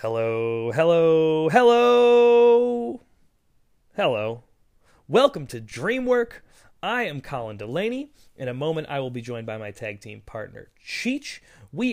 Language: English